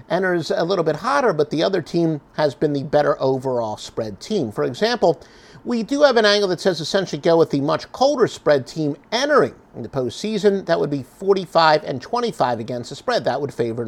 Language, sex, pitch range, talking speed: English, male, 145-195 Hz, 210 wpm